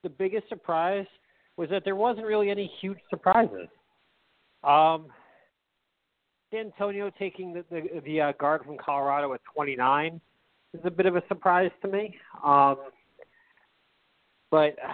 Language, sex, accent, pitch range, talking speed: English, male, American, 140-185 Hz, 135 wpm